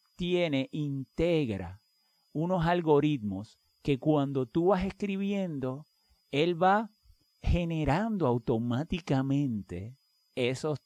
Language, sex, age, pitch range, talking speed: Spanish, male, 50-69, 115-155 Hz, 75 wpm